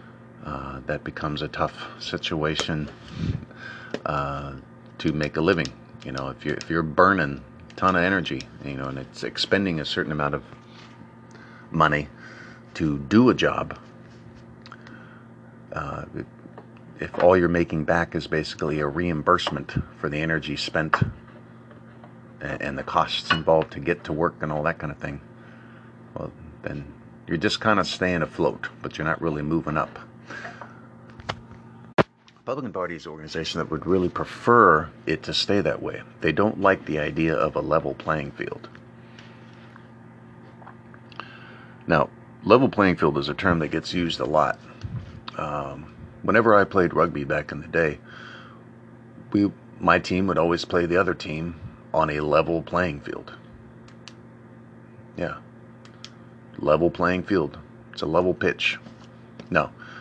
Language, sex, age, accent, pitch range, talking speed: English, male, 40-59, American, 80-115 Hz, 145 wpm